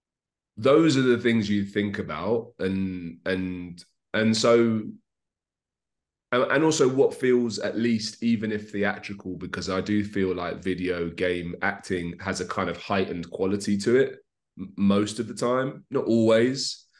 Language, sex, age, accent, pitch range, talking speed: English, male, 30-49, British, 95-115 Hz, 150 wpm